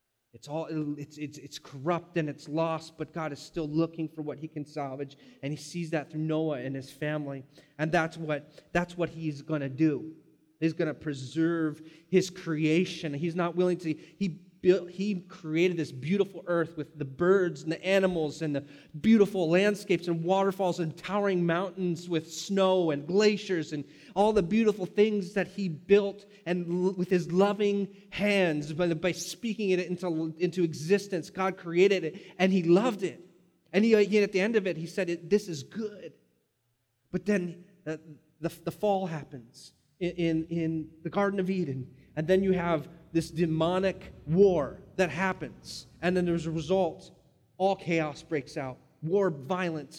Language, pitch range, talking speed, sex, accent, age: English, 150-185 Hz, 180 wpm, male, American, 30-49